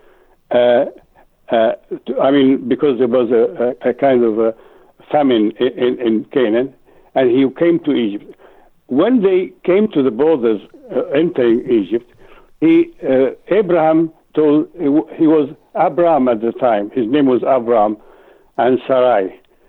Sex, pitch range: male, 125-190 Hz